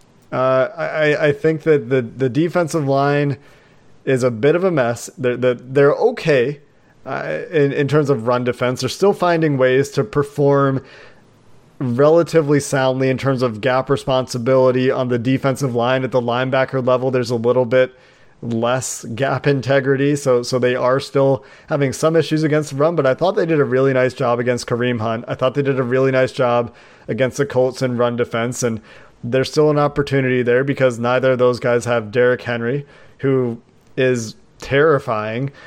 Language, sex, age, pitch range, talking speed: English, male, 30-49, 120-140 Hz, 180 wpm